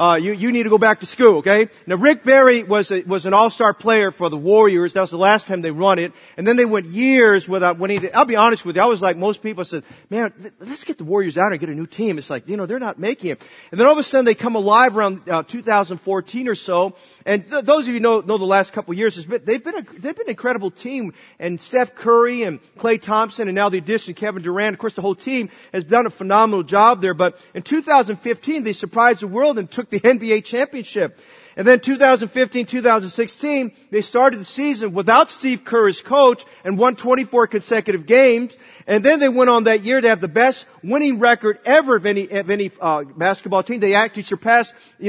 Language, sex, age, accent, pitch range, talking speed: English, male, 40-59, American, 195-240 Hz, 240 wpm